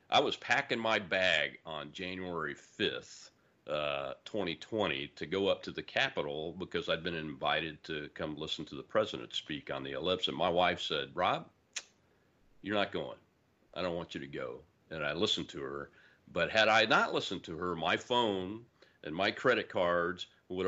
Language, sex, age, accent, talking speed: English, male, 50-69, American, 185 wpm